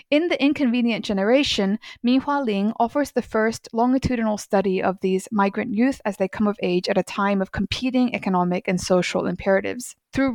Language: English